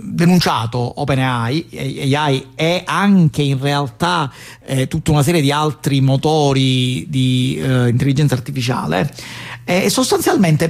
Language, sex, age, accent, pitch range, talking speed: Italian, male, 40-59, native, 125-155 Hz, 120 wpm